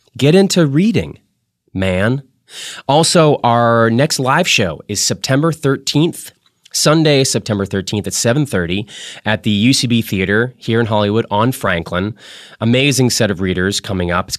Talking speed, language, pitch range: 140 wpm, English, 95-130 Hz